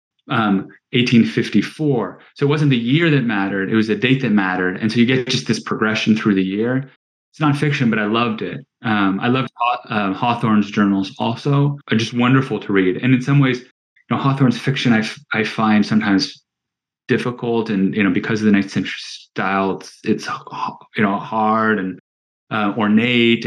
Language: English